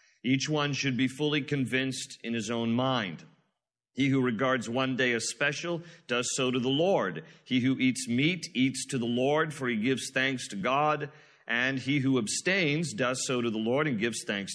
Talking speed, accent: 200 wpm, American